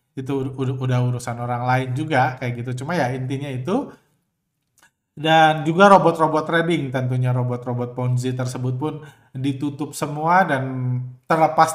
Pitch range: 125-155 Hz